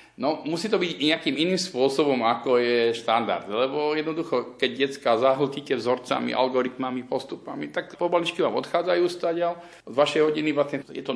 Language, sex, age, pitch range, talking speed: Slovak, male, 50-69, 110-145 Hz, 150 wpm